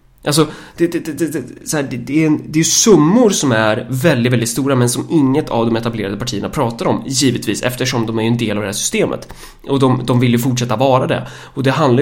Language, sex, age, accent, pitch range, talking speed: Swedish, male, 30-49, native, 120-165 Hz, 235 wpm